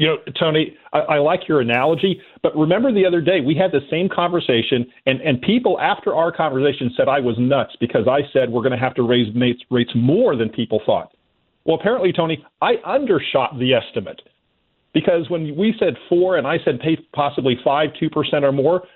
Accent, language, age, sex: American, English, 50-69, male